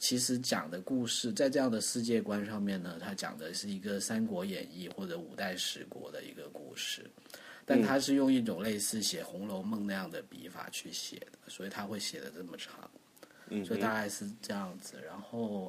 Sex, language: male, Chinese